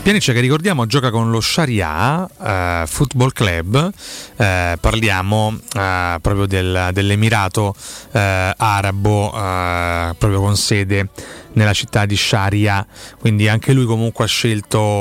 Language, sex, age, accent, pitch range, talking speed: Italian, male, 30-49, native, 95-115 Hz, 130 wpm